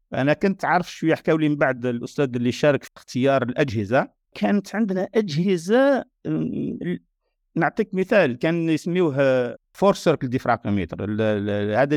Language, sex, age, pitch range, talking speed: Arabic, male, 50-69, 130-185 Hz, 120 wpm